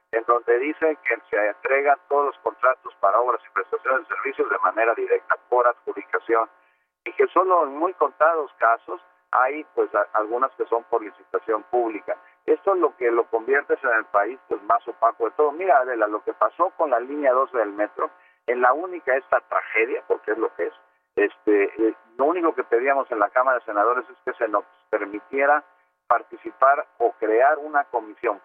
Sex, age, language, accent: male, 50-69, Spanish, Mexican